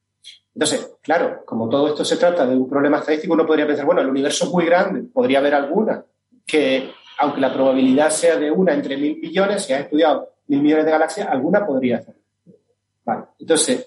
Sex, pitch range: male, 140-180 Hz